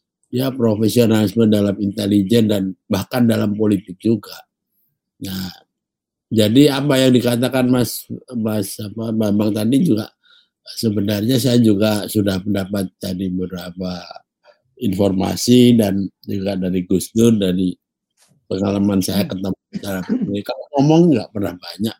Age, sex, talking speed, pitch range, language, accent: 50-69, male, 115 wpm, 100-115 Hz, Indonesian, native